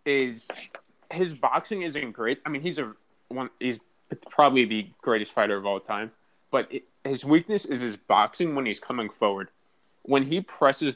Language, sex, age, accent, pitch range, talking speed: English, male, 20-39, American, 110-135 Hz, 175 wpm